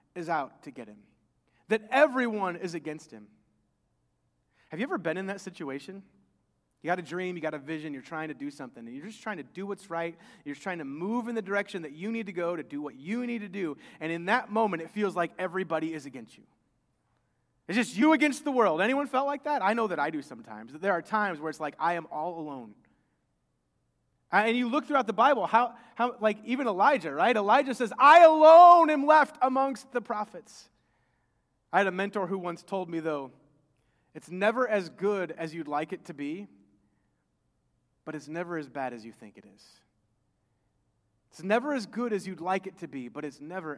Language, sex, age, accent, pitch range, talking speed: English, male, 30-49, American, 145-225 Hz, 215 wpm